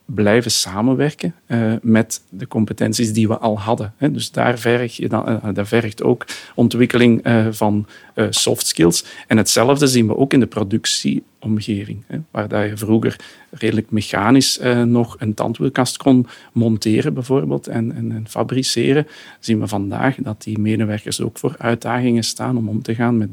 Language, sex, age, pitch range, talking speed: Dutch, male, 40-59, 110-125 Hz, 165 wpm